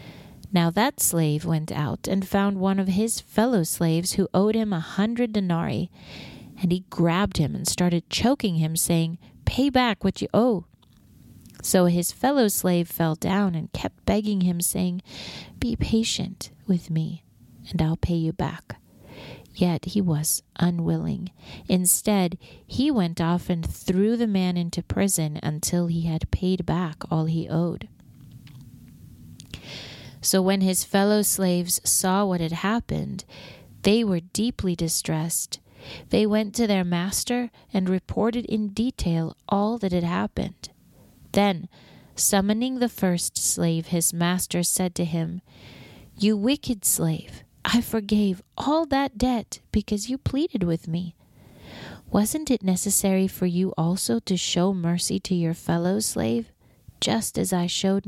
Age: 30-49